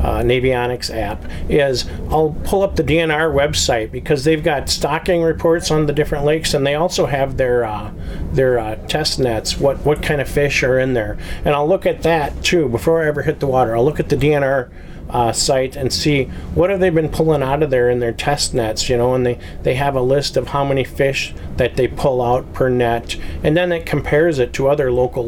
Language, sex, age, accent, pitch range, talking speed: English, male, 40-59, American, 120-150 Hz, 230 wpm